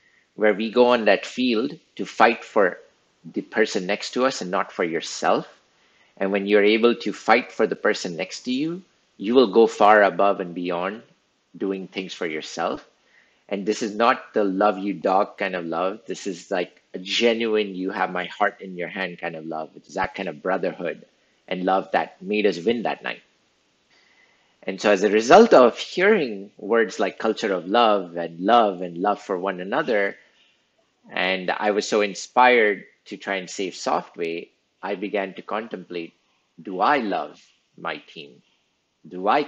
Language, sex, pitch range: English, male, 90-110 Hz